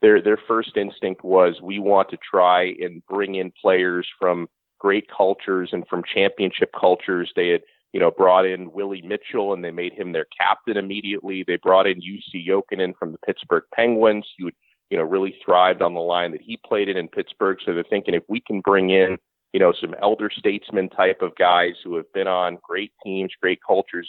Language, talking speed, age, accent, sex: English, 205 wpm, 30-49, American, male